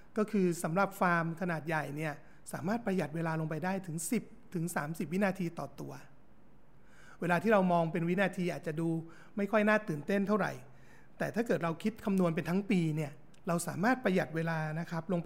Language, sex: Thai, male